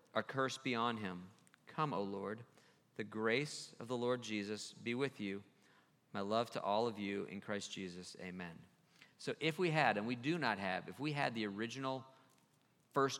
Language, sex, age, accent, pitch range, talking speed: English, male, 40-59, American, 105-140 Hz, 190 wpm